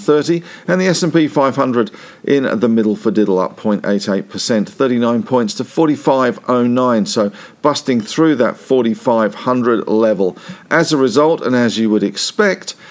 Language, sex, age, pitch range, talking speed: English, male, 50-69, 105-140 Hz, 130 wpm